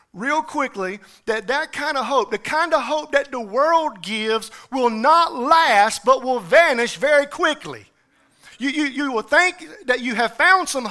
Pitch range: 220-285 Hz